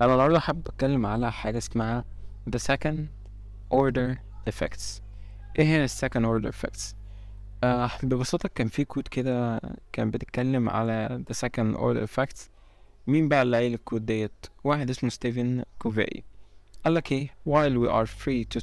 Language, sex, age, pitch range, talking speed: English, male, 20-39, 100-125 Hz, 115 wpm